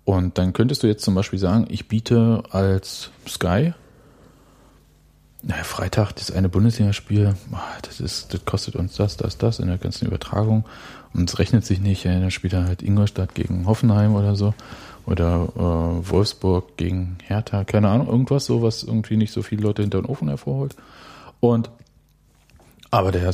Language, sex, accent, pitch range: German, male, German, 95-110 Hz